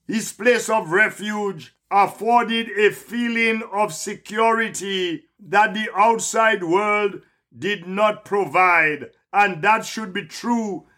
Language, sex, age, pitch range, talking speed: English, male, 50-69, 190-225 Hz, 115 wpm